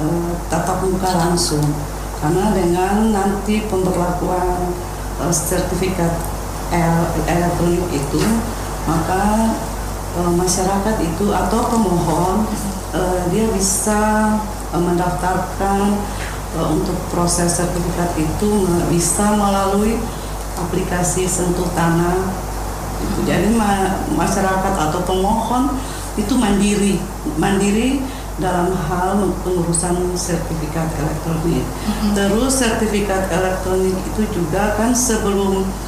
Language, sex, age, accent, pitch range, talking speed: Indonesian, female, 40-59, native, 170-200 Hz, 95 wpm